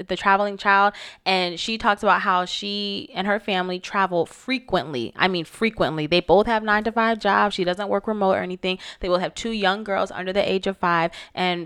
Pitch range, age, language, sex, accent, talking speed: 170-215 Hz, 20-39, English, female, American, 215 wpm